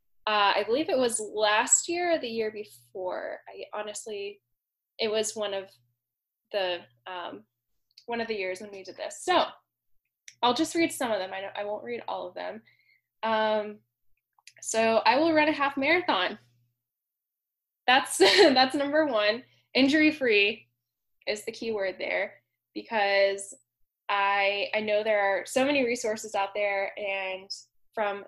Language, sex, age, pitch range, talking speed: English, female, 10-29, 195-250 Hz, 155 wpm